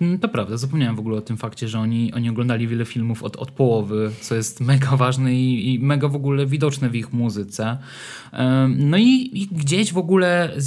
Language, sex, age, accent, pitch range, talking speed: Polish, male, 20-39, native, 120-155 Hz, 210 wpm